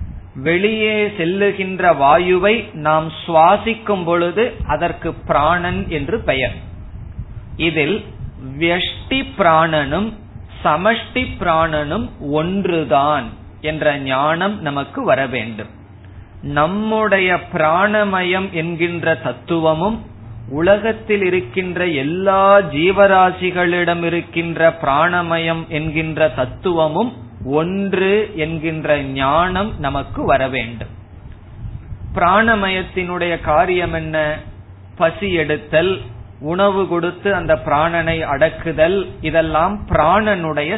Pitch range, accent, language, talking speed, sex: 145-190 Hz, native, Tamil, 75 wpm, male